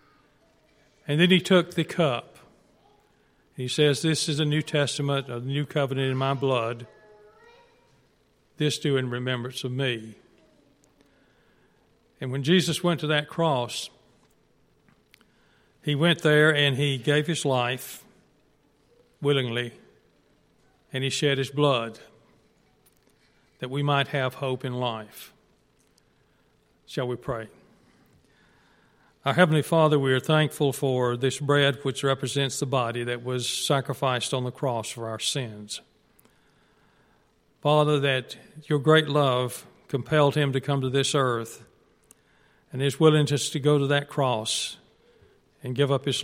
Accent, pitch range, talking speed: American, 125-145 Hz, 130 wpm